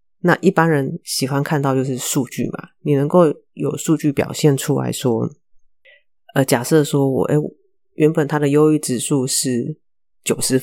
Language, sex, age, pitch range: Chinese, female, 30-49, 130-155 Hz